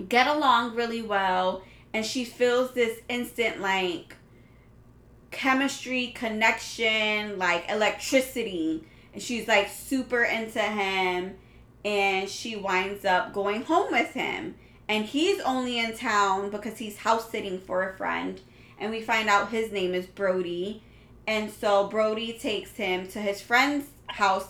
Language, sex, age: English, female, 20-39